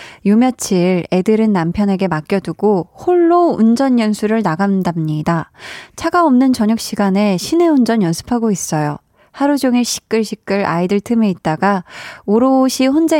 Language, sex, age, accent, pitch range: Korean, female, 20-39, native, 185-250 Hz